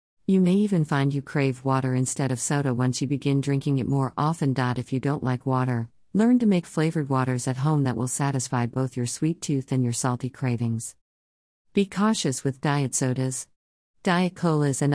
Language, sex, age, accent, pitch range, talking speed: English, female, 50-69, American, 130-150 Hz, 195 wpm